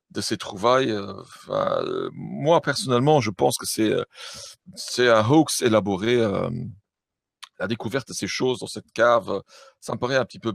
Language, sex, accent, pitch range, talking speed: French, male, French, 105-145 Hz, 160 wpm